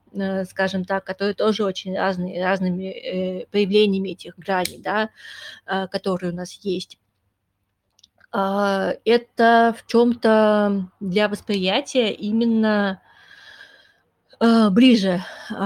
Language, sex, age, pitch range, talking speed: Russian, female, 20-39, 185-220 Hz, 85 wpm